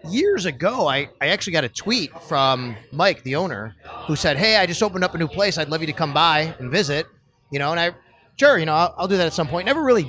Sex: male